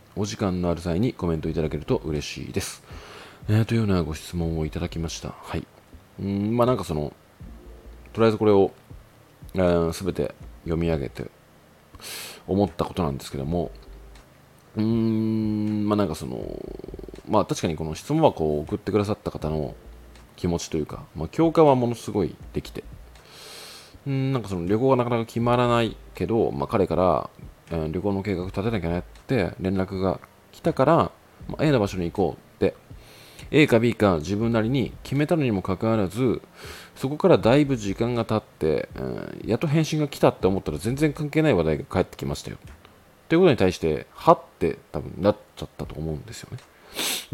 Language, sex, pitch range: Japanese, male, 80-115 Hz